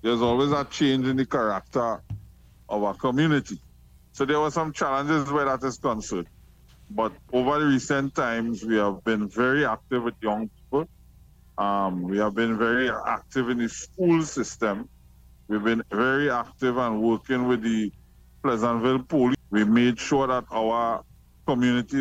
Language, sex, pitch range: English, male, 100-130 Hz